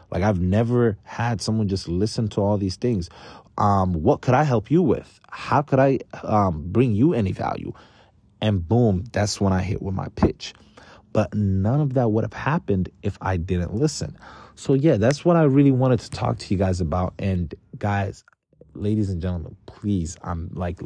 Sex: male